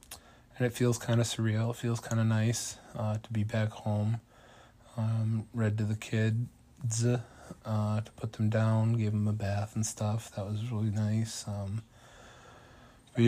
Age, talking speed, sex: 20-39, 170 wpm, male